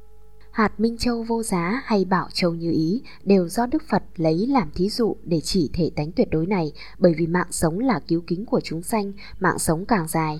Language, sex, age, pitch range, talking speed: Vietnamese, female, 10-29, 160-205 Hz, 225 wpm